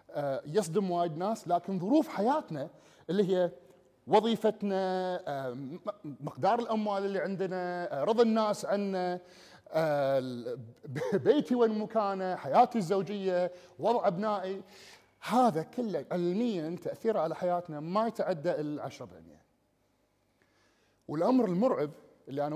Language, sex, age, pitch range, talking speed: Arabic, male, 30-49, 160-210 Hz, 95 wpm